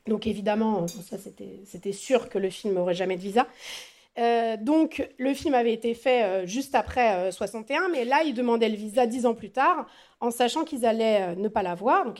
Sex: female